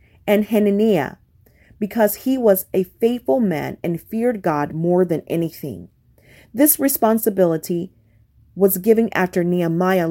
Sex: female